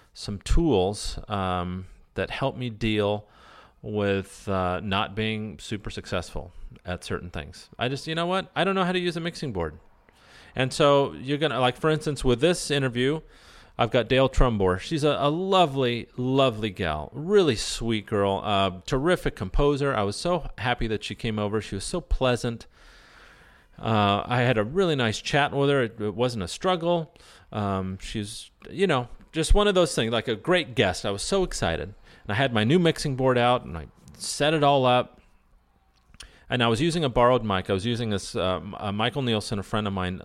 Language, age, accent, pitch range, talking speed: English, 40-59, American, 100-140 Hz, 195 wpm